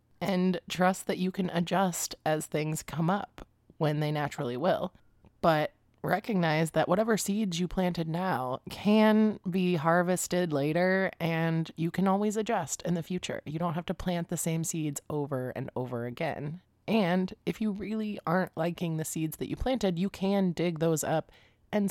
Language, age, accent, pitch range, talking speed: English, 20-39, American, 155-190 Hz, 175 wpm